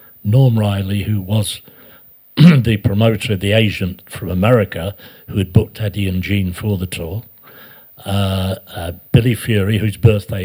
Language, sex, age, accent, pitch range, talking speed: English, male, 60-79, British, 95-115 Hz, 150 wpm